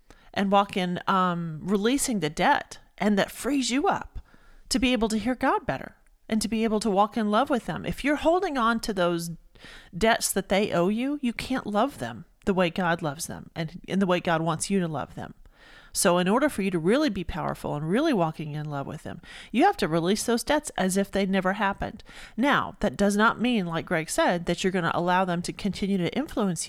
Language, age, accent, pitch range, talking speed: English, 40-59, American, 180-225 Hz, 230 wpm